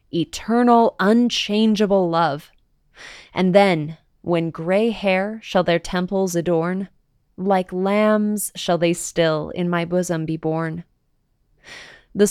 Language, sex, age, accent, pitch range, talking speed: English, female, 20-39, American, 170-215 Hz, 110 wpm